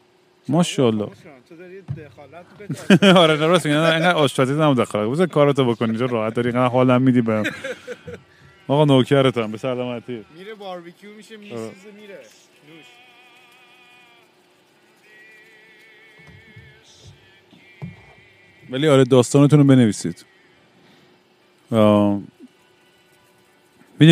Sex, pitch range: male, 115-145 Hz